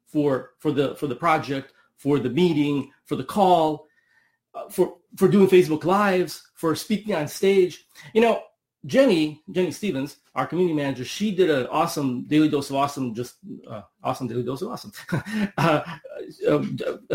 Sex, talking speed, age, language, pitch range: male, 160 wpm, 30-49, English, 135-180 Hz